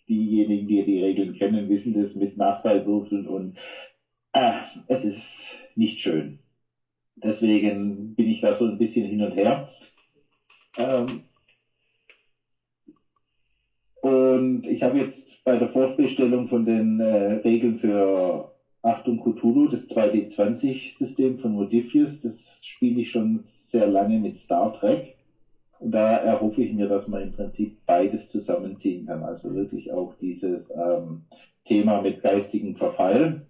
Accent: German